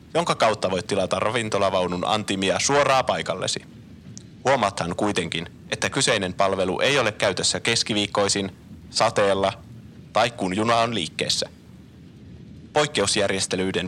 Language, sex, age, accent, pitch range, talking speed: Finnish, male, 30-49, native, 95-120 Hz, 105 wpm